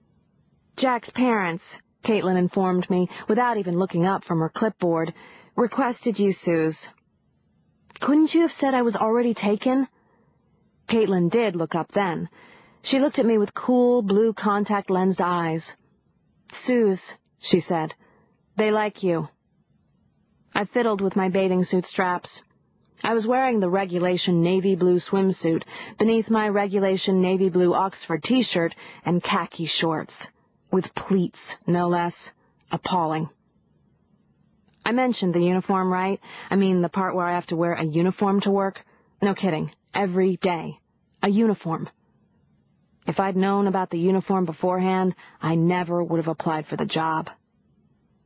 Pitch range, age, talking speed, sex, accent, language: 175-215 Hz, 40-59, 140 wpm, female, American, English